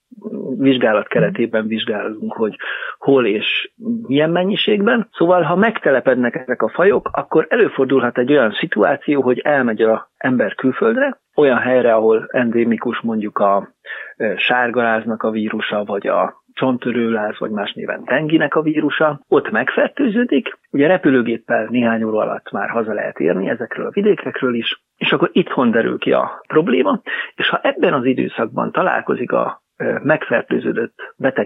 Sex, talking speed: male, 140 wpm